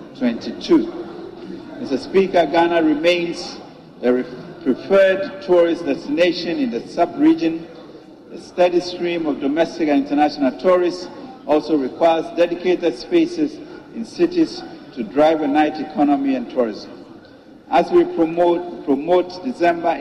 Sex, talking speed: male, 120 wpm